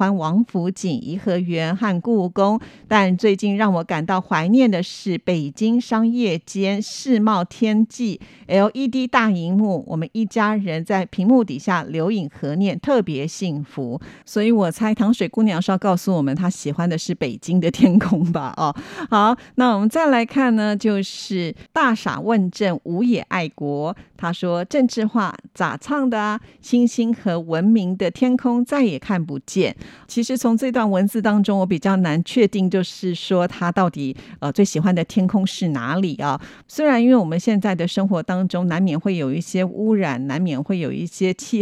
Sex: female